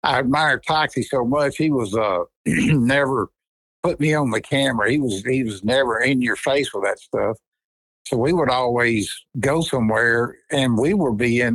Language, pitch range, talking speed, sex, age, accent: English, 110-140 Hz, 185 wpm, male, 60-79, American